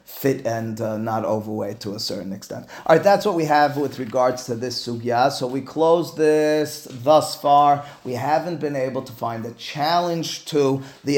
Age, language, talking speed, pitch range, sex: 30-49, English, 195 wpm, 120-155 Hz, male